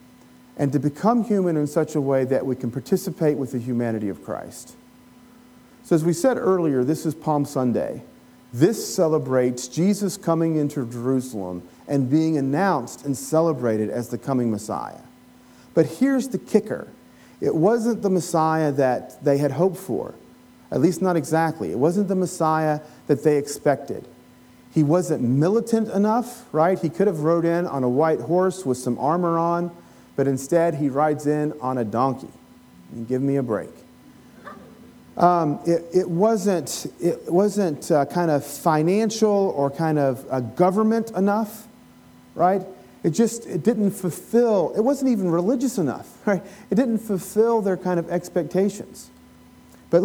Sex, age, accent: male, 40-59, American